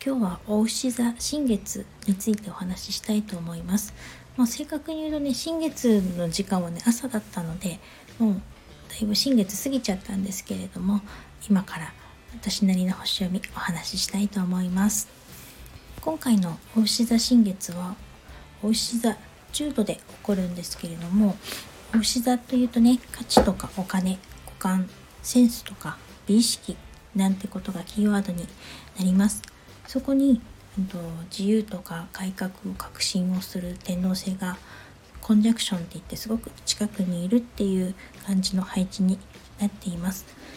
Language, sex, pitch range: Japanese, female, 185-235 Hz